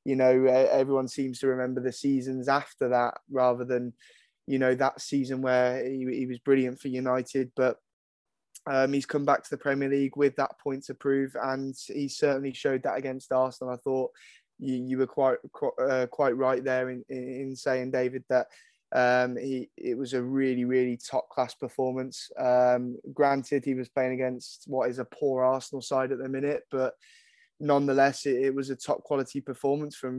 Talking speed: 190 wpm